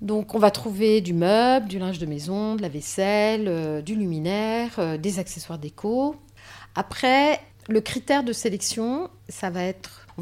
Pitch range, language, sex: 170-215 Hz, French, female